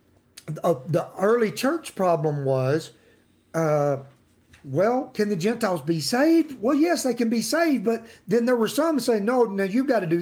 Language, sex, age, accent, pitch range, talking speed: English, male, 50-69, American, 150-230 Hz, 180 wpm